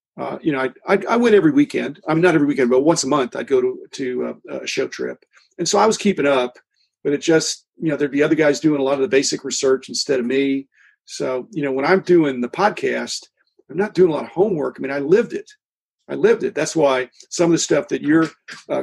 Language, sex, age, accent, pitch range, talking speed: English, male, 50-69, American, 140-200 Hz, 260 wpm